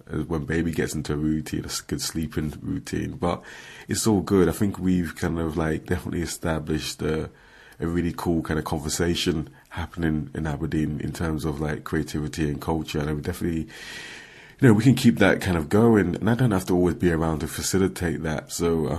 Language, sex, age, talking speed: English, male, 30-49, 205 wpm